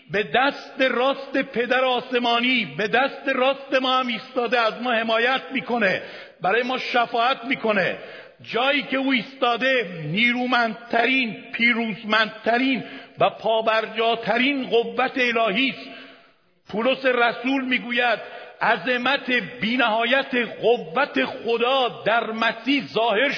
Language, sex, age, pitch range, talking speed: Persian, male, 50-69, 220-265 Hz, 105 wpm